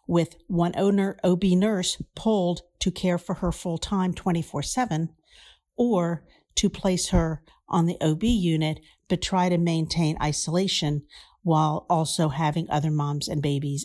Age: 50-69